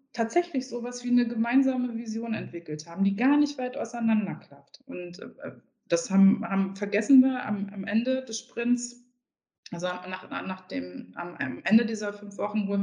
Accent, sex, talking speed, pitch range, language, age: German, female, 160 wpm, 195-240 Hz, German, 20-39